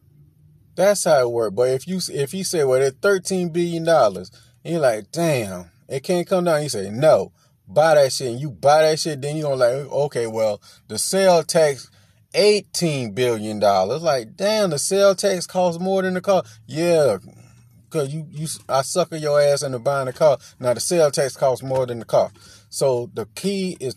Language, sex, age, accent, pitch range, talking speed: English, male, 30-49, American, 120-175 Hz, 200 wpm